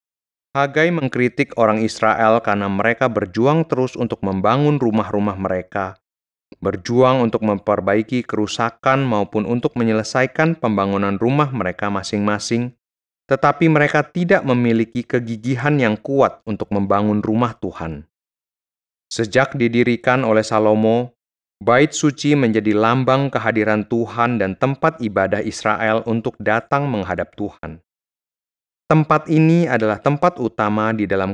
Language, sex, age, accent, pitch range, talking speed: Indonesian, male, 30-49, native, 105-130 Hz, 115 wpm